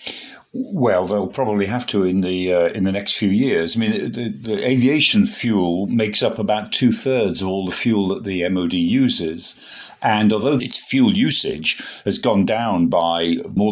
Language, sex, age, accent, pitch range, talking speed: English, male, 50-69, British, 100-140 Hz, 185 wpm